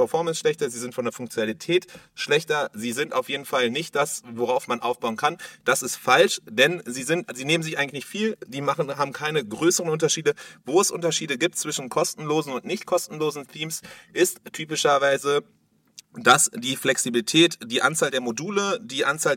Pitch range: 125-170 Hz